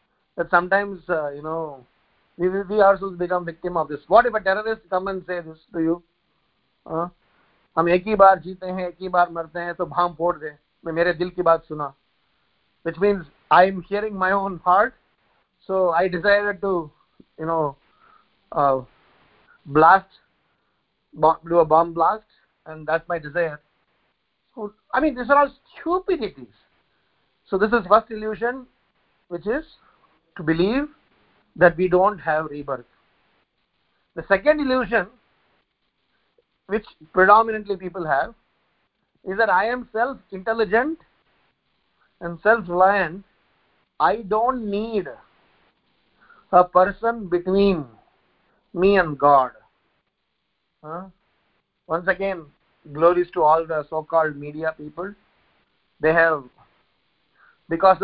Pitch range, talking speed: 165-205 Hz, 110 wpm